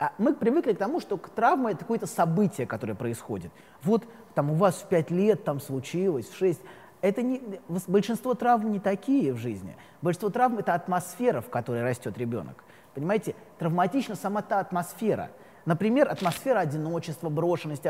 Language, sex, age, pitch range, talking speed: Russian, male, 20-39, 160-215 Hz, 150 wpm